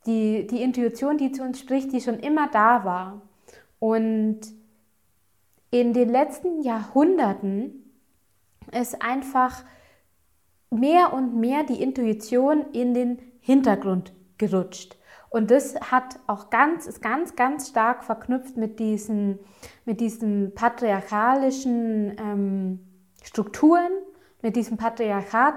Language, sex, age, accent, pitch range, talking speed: German, female, 20-39, German, 205-255 Hz, 115 wpm